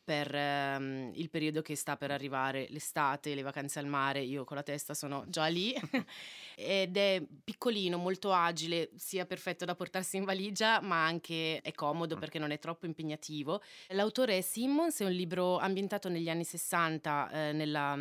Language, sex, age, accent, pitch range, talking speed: Italian, female, 30-49, native, 145-175 Hz, 170 wpm